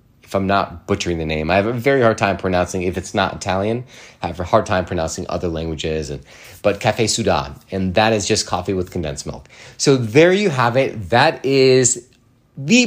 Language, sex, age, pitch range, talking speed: English, male, 30-49, 100-130 Hz, 205 wpm